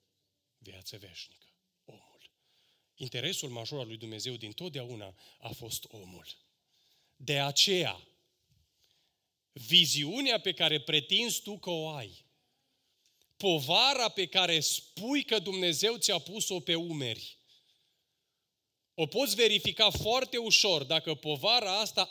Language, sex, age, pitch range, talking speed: Romanian, male, 30-49, 125-180 Hz, 110 wpm